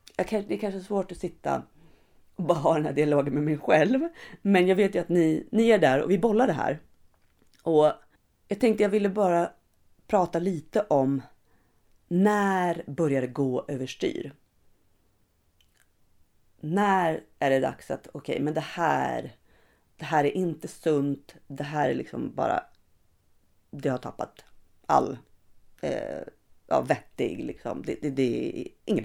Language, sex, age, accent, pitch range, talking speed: Swedish, female, 40-59, native, 140-200 Hz, 165 wpm